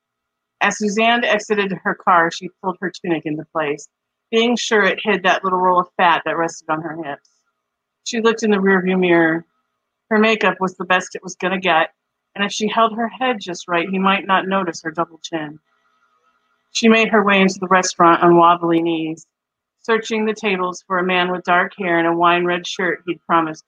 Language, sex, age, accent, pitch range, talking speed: English, female, 50-69, American, 165-195 Hz, 205 wpm